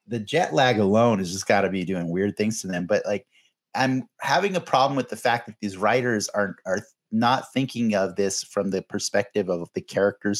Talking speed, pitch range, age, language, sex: 220 wpm, 105-140 Hz, 30-49, English, male